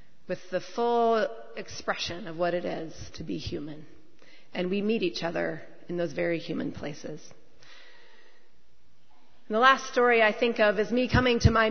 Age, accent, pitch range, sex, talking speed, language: 30-49, American, 195-250 Hz, female, 170 wpm, English